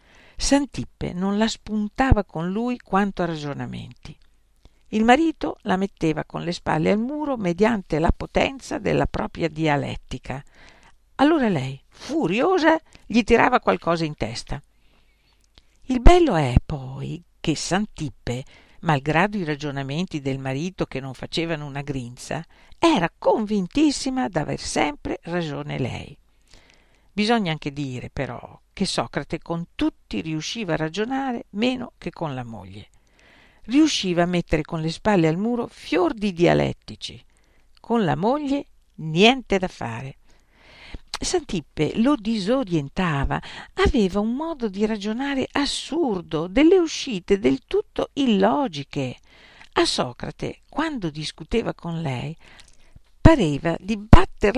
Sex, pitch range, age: female, 150-245 Hz, 50-69